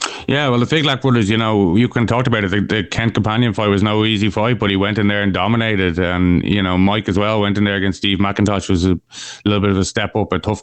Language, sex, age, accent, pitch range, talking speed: English, male, 30-49, Irish, 90-105 Hz, 280 wpm